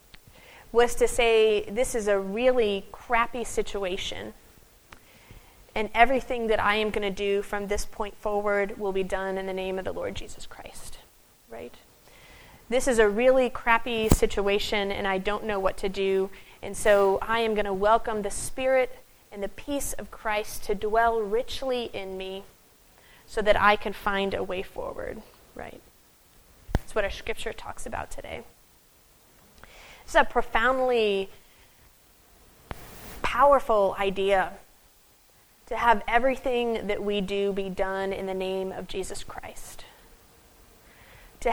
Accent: American